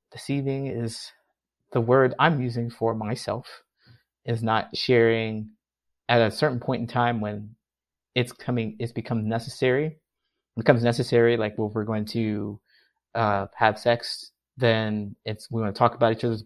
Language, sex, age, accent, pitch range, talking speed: English, male, 30-49, American, 110-130 Hz, 155 wpm